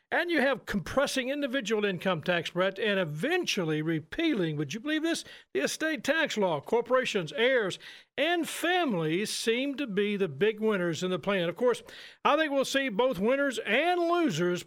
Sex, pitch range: male, 180-265 Hz